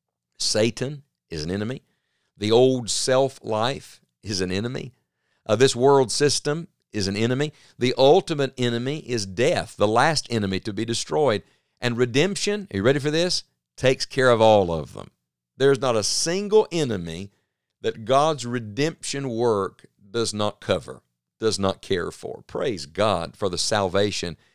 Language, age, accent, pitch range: English, 50-69, American, 100-135 Hz